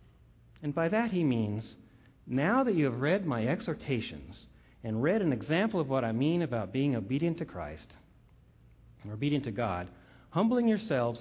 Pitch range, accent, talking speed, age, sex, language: 110-150 Hz, American, 160 wpm, 50-69, male, English